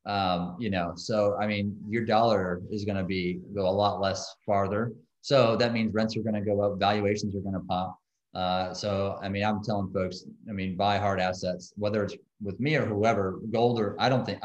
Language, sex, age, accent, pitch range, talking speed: English, male, 30-49, American, 90-105 Hz, 225 wpm